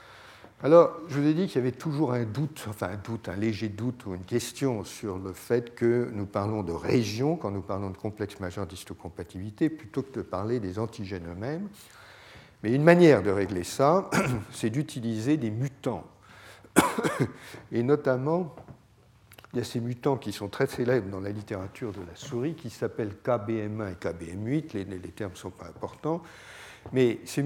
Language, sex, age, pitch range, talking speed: French, male, 60-79, 100-135 Hz, 185 wpm